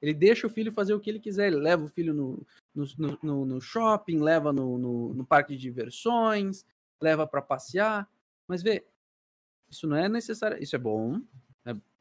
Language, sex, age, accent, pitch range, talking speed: Portuguese, male, 20-39, Brazilian, 125-175 Hz, 185 wpm